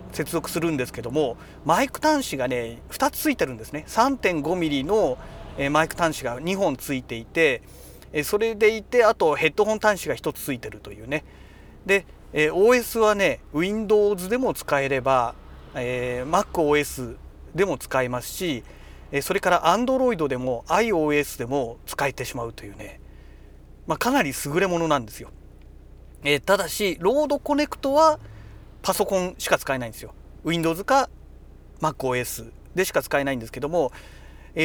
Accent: native